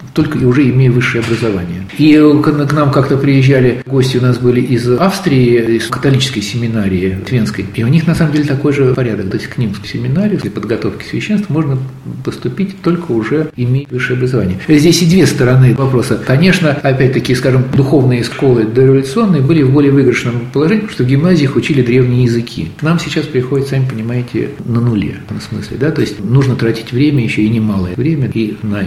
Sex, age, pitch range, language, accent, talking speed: male, 50-69, 115-150 Hz, Russian, native, 185 wpm